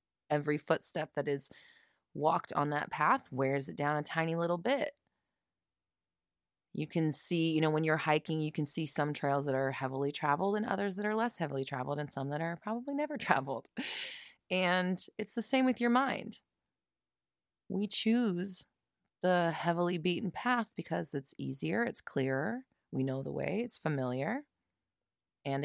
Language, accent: English, American